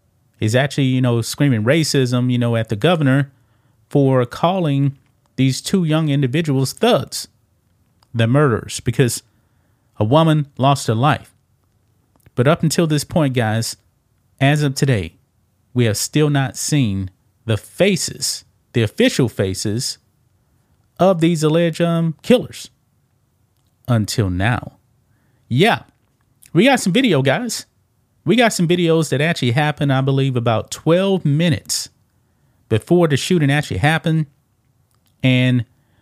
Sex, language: male, English